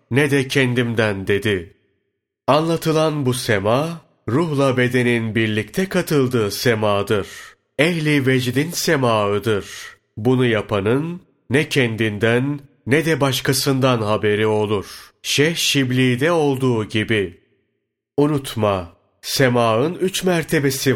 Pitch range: 110-140 Hz